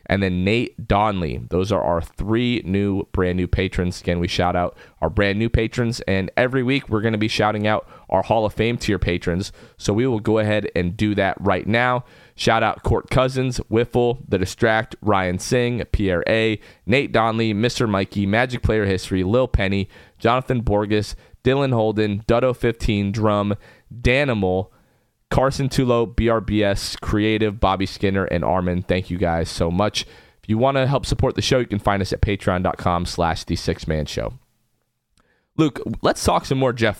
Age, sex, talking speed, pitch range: 30-49, male, 175 wpm, 95-115 Hz